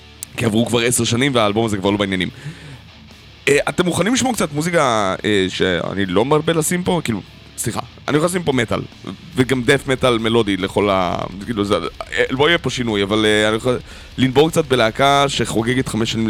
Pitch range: 105-140 Hz